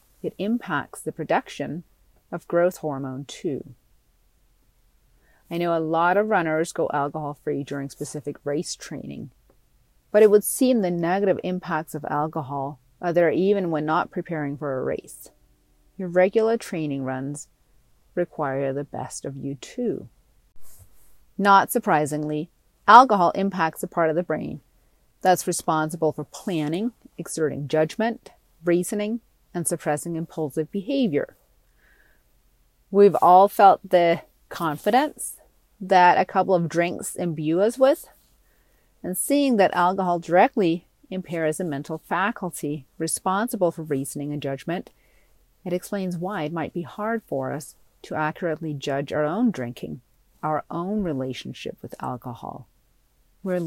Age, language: 40-59, English